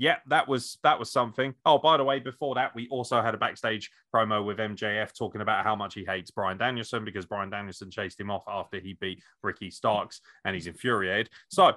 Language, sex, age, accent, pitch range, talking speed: English, male, 30-49, British, 115-155 Hz, 220 wpm